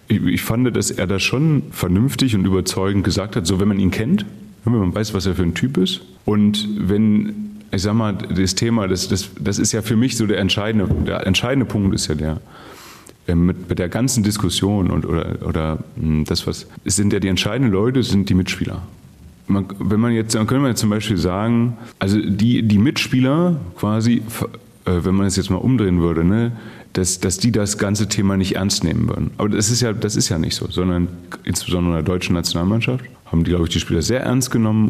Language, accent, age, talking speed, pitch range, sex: German, German, 30-49, 215 wpm, 90-115 Hz, male